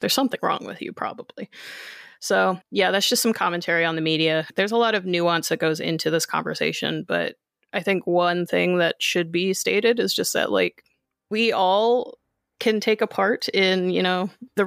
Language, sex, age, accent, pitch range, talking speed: English, female, 30-49, American, 175-235 Hz, 195 wpm